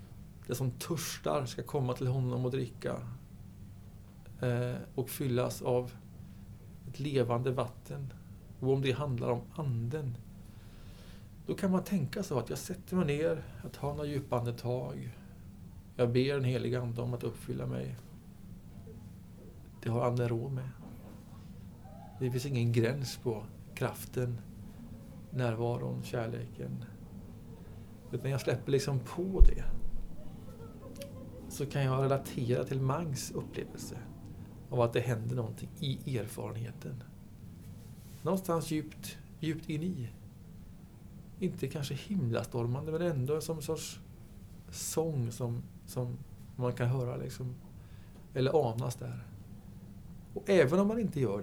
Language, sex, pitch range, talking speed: Swedish, male, 105-135 Hz, 125 wpm